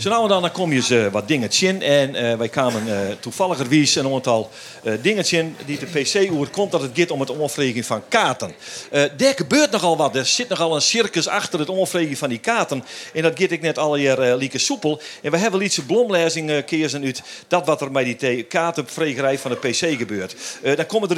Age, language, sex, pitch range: 50-69, Dutch, male, 130-180 Hz